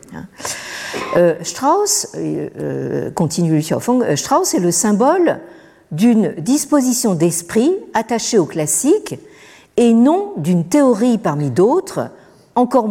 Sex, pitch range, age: female, 155-245 Hz, 50-69